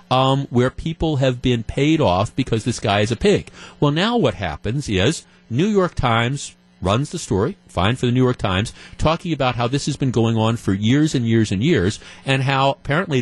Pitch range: 115-165 Hz